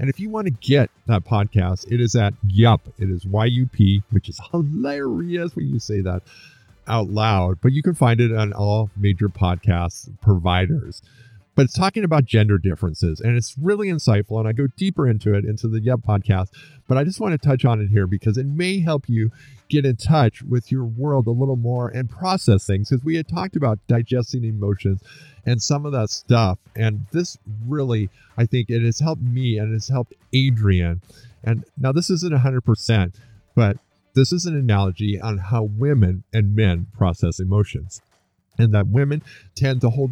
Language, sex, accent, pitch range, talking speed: English, male, American, 100-135 Hz, 190 wpm